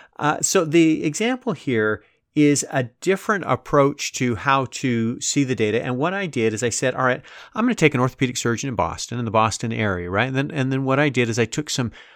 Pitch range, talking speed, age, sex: 120-150 Hz, 235 wpm, 40-59, male